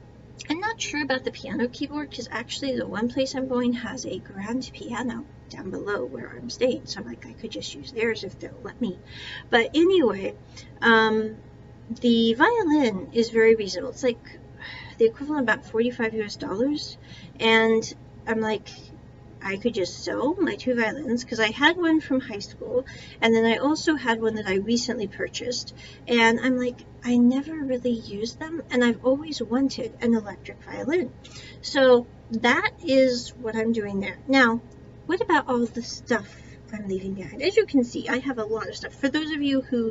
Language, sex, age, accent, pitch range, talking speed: English, female, 40-59, American, 225-270 Hz, 190 wpm